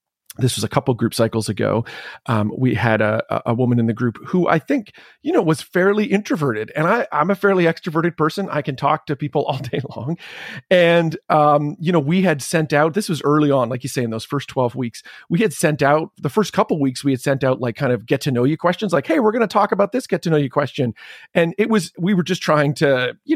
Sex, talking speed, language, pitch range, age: male, 260 wpm, English, 130-175 Hz, 40-59